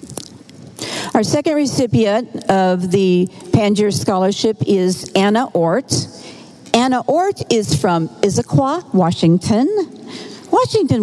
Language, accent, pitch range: English, American, 190-260 Hz